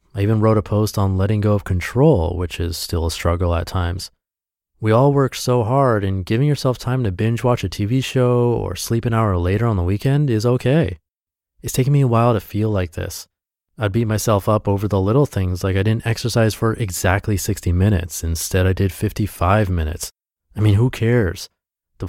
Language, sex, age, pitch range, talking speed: English, male, 30-49, 90-115 Hz, 210 wpm